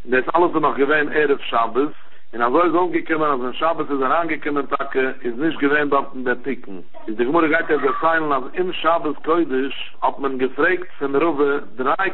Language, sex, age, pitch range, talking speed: English, male, 60-79, 130-160 Hz, 190 wpm